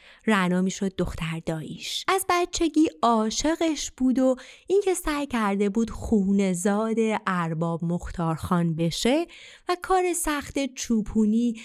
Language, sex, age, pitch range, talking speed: Persian, female, 30-49, 180-265 Hz, 110 wpm